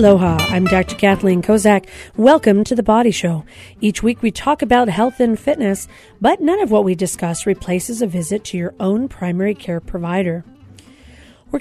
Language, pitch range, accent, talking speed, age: English, 185-250 Hz, American, 175 wpm, 40-59